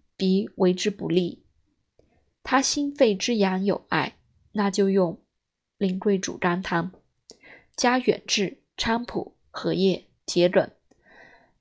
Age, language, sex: 20-39, Chinese, female